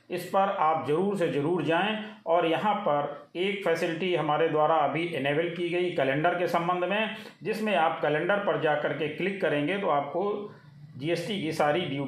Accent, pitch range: native, 150-185 Hz